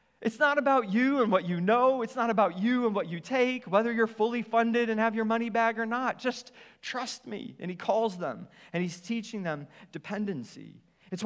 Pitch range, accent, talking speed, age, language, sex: 185-235 Hz, American, 215 wpm, 40-59, English, male